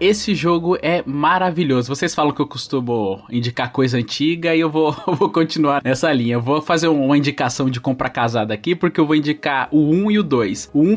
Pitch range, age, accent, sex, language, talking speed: 130-180 Hz, 20-39, Brazilian, male, Portuguese, 215 wpm